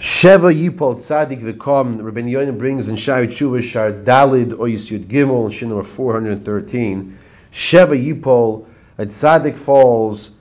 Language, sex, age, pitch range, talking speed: English, male, 40-59, 115-150 Hz, 125 wpm